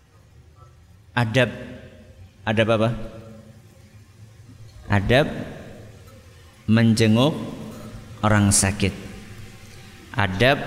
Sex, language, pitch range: male, Indonesian, 105-120 Hz